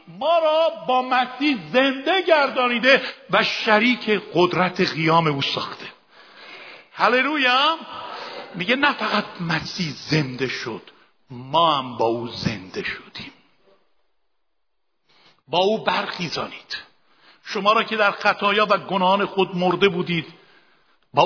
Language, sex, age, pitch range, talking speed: Persian, male, 50-69, 180-250 Hz, 110 wpm